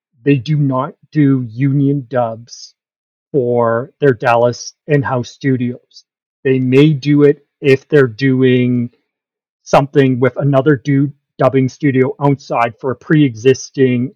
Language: English